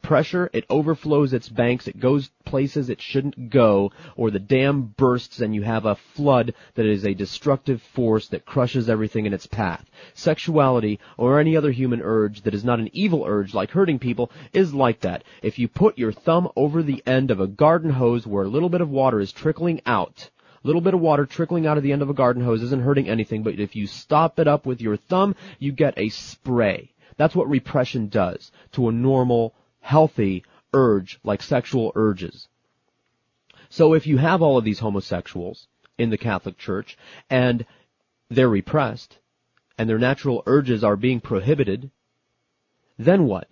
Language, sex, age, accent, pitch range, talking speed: English, male, 30-49, American, 110-145 Hz, 190 wpm